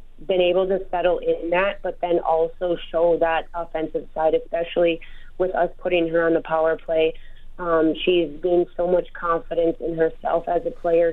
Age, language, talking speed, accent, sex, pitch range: 30-49, English, 180 wpm, American, female, 155-170 Hz